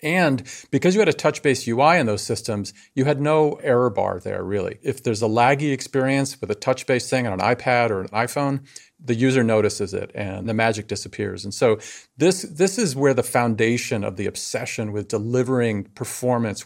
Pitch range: 110-135 Hz